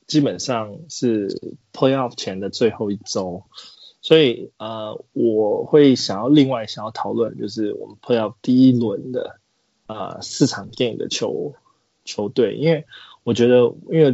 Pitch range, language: 110-130 Hz, Chinese